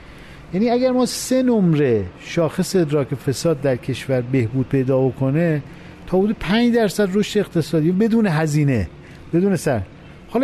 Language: Persian